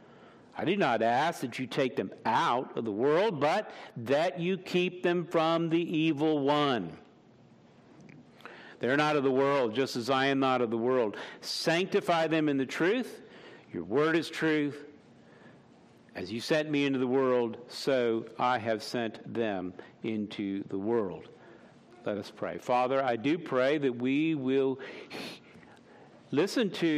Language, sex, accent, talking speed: English, male, American, 155 wpm